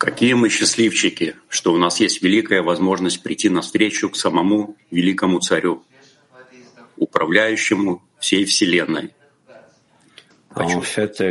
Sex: male